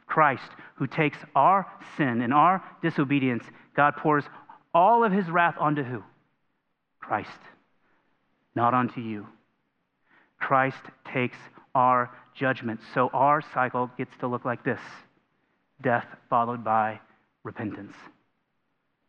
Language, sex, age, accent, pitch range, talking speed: English, male, 30-49, American, 125-155 Hz, 115 wpm